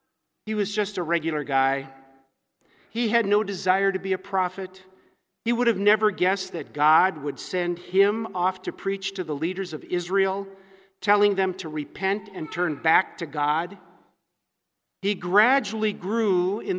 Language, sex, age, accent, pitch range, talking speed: English, male, 50-69, American, 170-205 Hz, 160 wpm